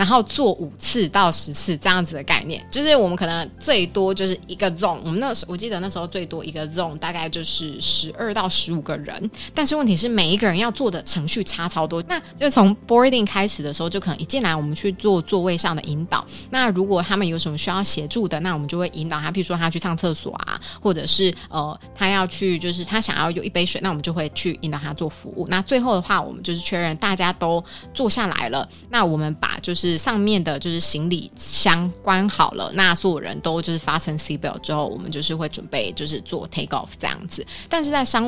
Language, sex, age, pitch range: Chinese, female, 20-39, 160-195 Hz